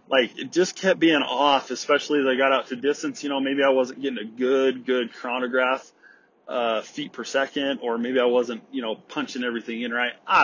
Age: 30-49